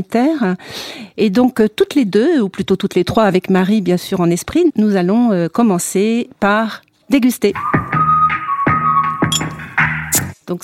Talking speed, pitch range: 125 wpm, 180-230 Hz